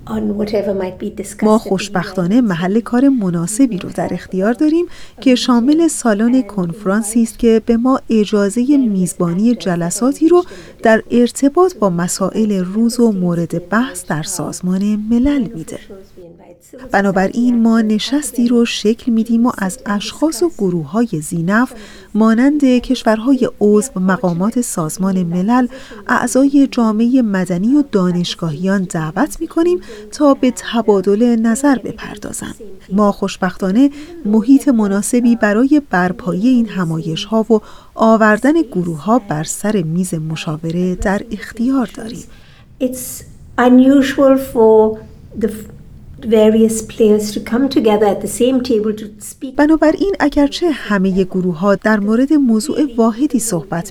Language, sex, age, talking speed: Persian, female, 30-49, 100 wpm